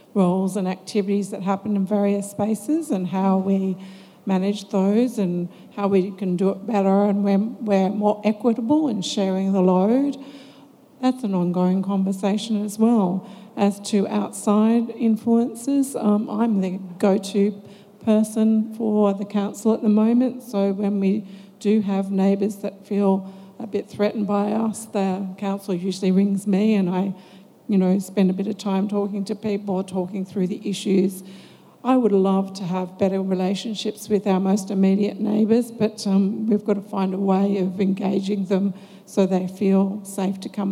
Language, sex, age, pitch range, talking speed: English, female, 50-69, 195-220 Hz, 170 wpm